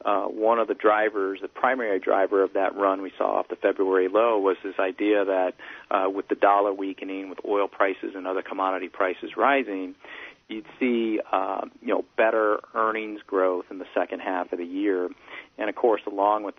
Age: 40-59